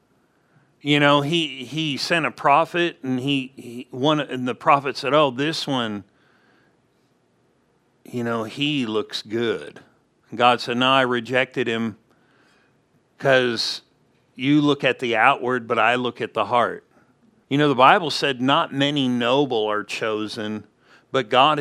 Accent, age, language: American, 50-69, English